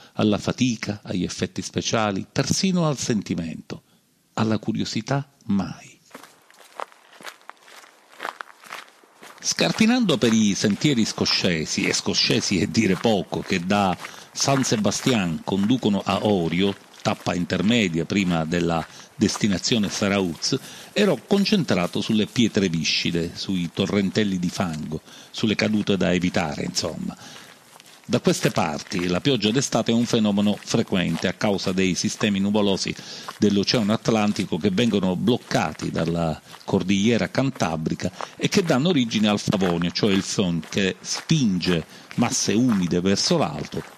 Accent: native